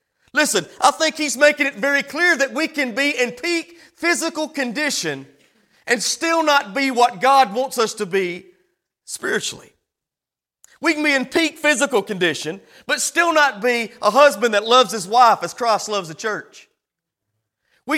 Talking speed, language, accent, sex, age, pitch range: 165 wpm, English, American, male, 40-59, 220-295 Hz